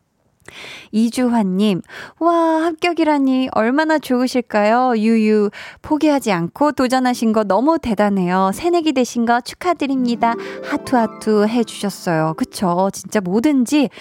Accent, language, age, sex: native, Korean, 20-39, female